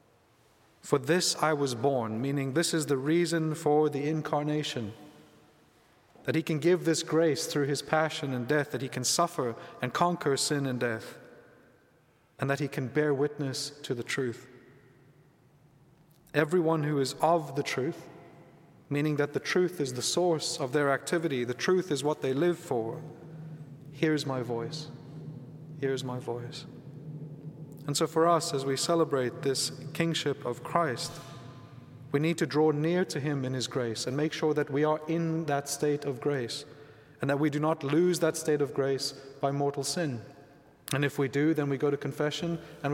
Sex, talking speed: male, 175 wpm